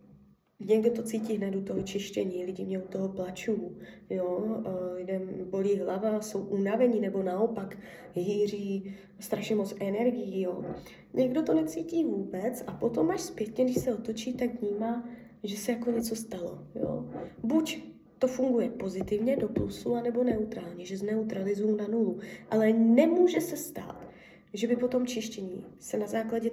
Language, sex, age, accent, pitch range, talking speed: Czech, female, 20-39, native, 200-235 Hz, 150 wpm